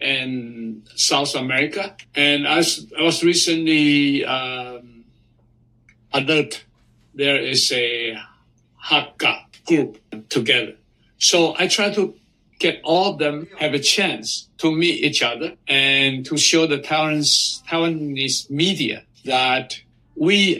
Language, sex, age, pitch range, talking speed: English, male, 60-79, 120-155 Hz, 115 wpm